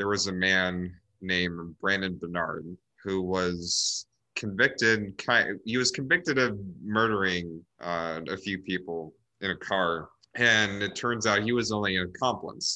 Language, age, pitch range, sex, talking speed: English, 30-49, 90-105 Hz, male, 145 wpm